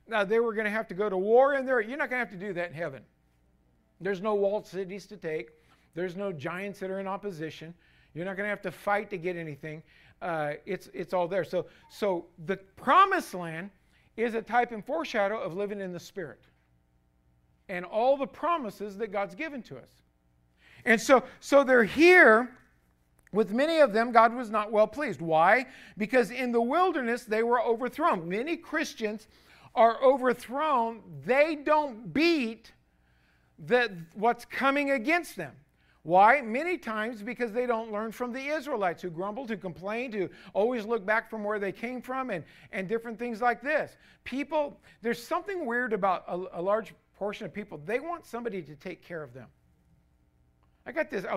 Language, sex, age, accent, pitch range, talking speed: English, male, 50-69, American, 165-245 Hz, 185 wpm